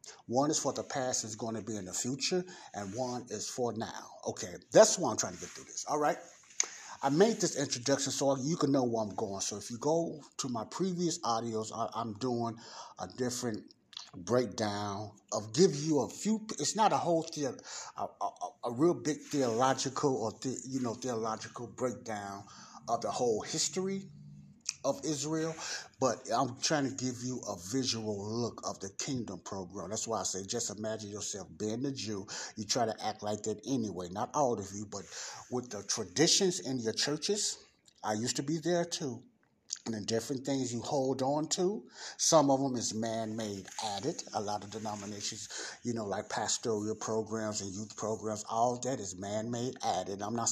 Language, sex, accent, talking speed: English, male, American, 190 wpm